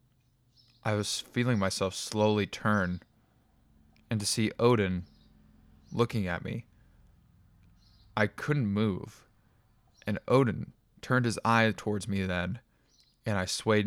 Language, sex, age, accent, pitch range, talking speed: English, male, 20-39, American, 100-125 Hz, 115 wpm